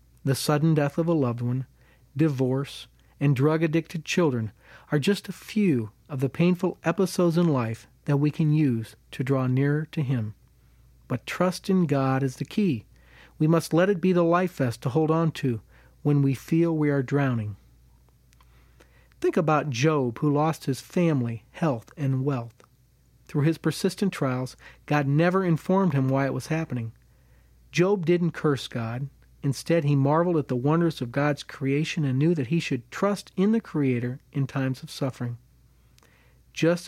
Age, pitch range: 40-59, 125-170 Hz